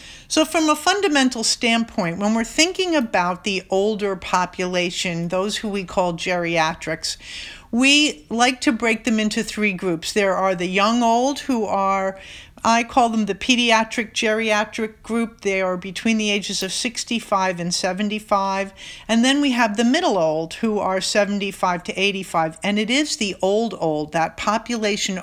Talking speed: 160 wpm